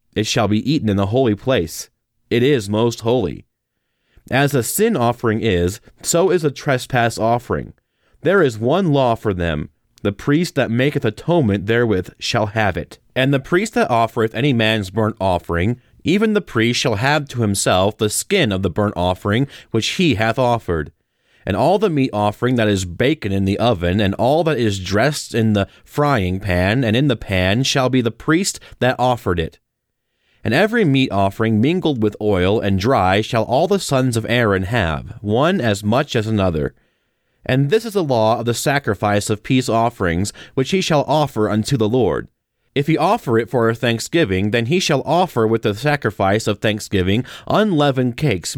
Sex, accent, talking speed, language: male, American, 185 wpm, English